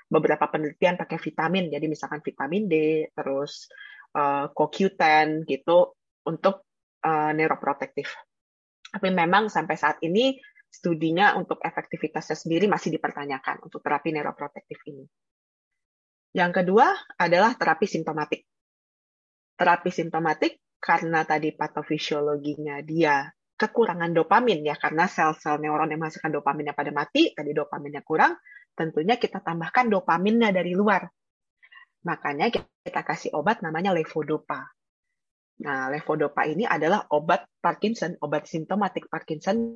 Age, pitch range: 20-39, 150-190 Hz